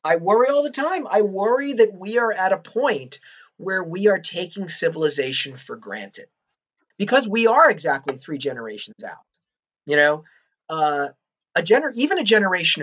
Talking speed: 165 wpm